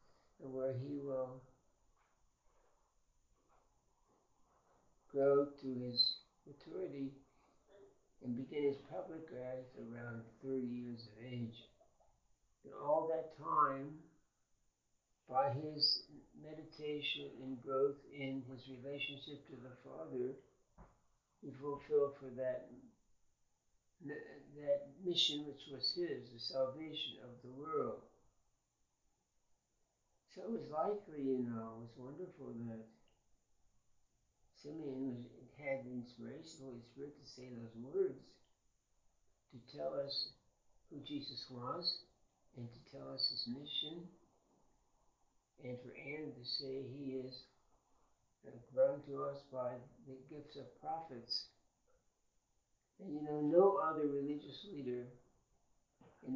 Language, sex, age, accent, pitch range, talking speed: English, male, 60-79, American, 125-145 Hz, 110 wpm